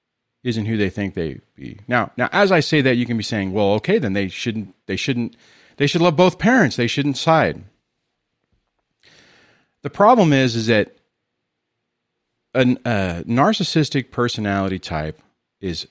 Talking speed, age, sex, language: 160 wpm, 40-59, male, English